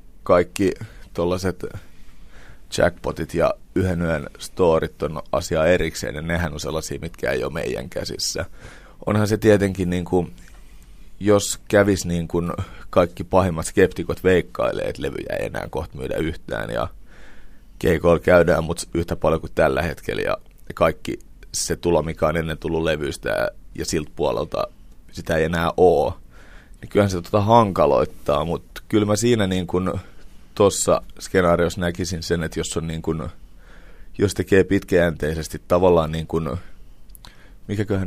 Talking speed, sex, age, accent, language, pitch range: 140 wpm, male, 30-49, native, Finnish, 80-100 Hz